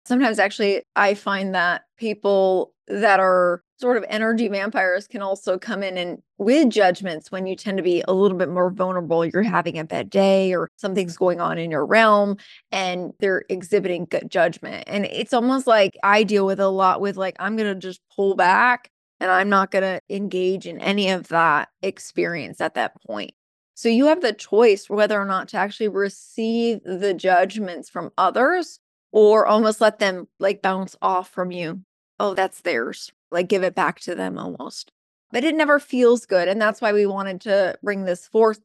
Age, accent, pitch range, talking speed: 20-39, American, 185-215 Hz, 195 wpm